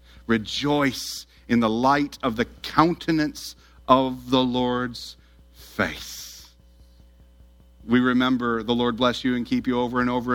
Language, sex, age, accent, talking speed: English, male, 40-59, American, 135 wpm